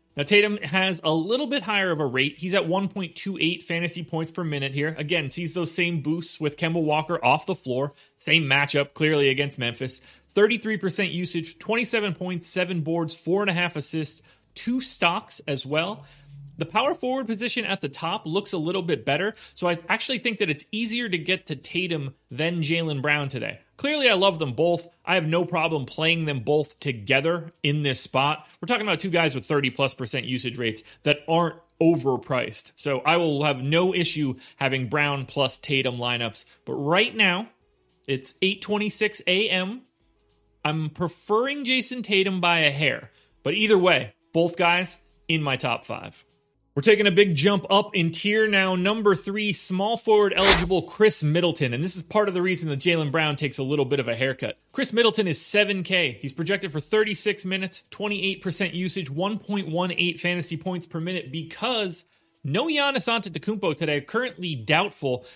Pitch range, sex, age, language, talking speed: 145-195 Hz, male, 30-49, English, 175 wpm